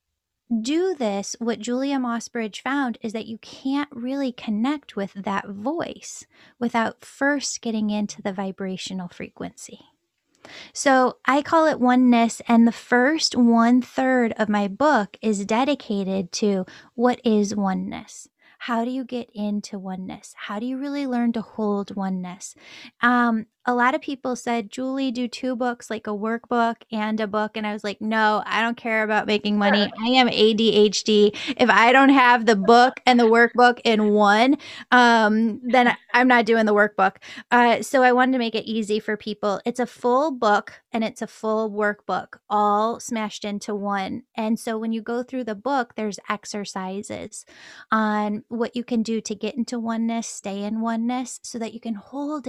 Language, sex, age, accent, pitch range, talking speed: English, female, 10-29, American, 210-250 Hz, 175 wpm